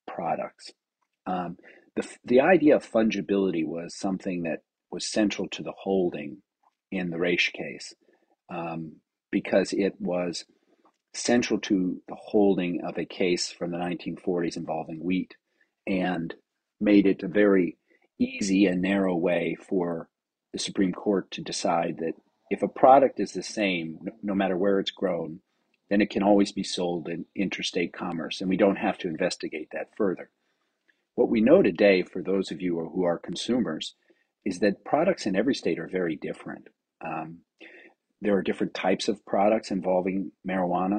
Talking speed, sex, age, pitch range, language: 160 wpm, male, 40-59, 85-100 Hz, English